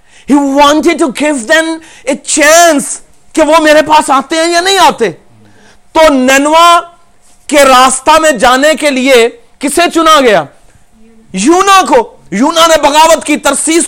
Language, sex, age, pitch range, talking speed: Urdu, male, 40-59, 255-325 Hz, 110 wpm